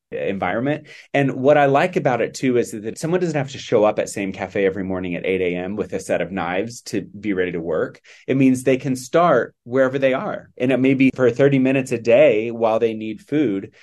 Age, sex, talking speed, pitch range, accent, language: 30-49, male, 235 wpm, 100-135 Hz, American, English